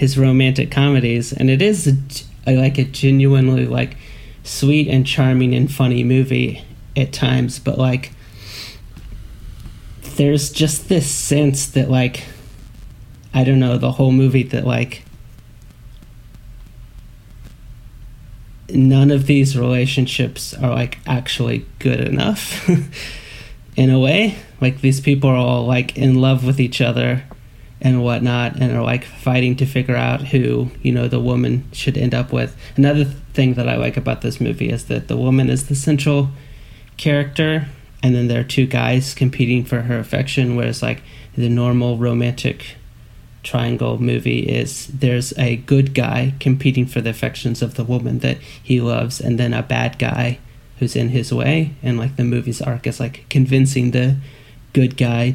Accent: American